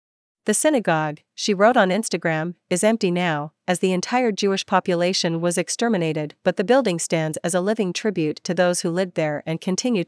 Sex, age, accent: female, 40-59, American